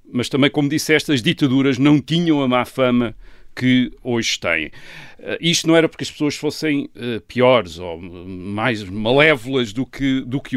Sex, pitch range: male, 120-165 Hz